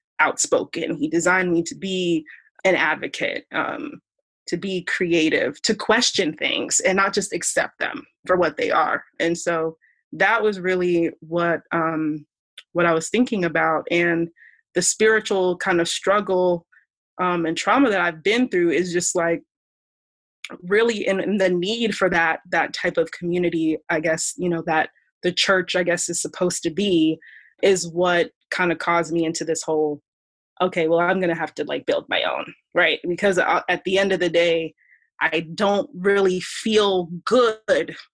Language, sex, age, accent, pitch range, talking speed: English, female, 20-39, American, 170-200 Hz, 170 wpm